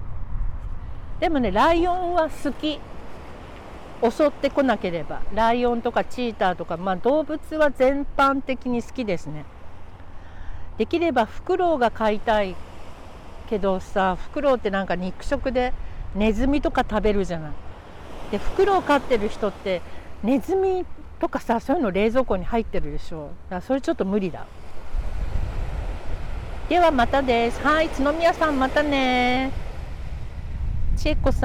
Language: Japanese